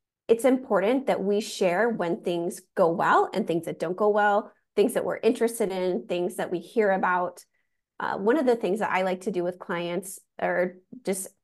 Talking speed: 205 wpm